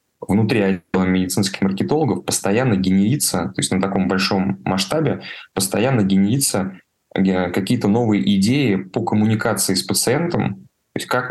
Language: Russian